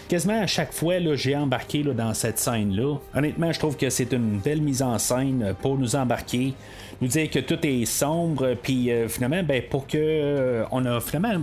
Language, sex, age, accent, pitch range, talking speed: French, male, 30-49, Canadian, 115-150 Hz, 200 wpm